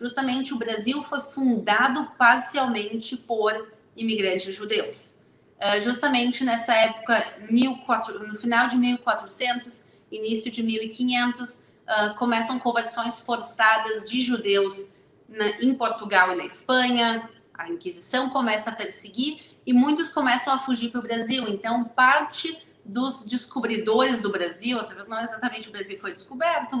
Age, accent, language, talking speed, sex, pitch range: 30-49, Brazilian, Portuguese, 130 wpm, female, 220-255 Hz